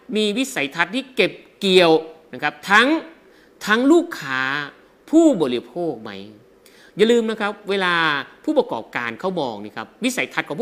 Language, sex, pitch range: Thai, male, 165-255 Hz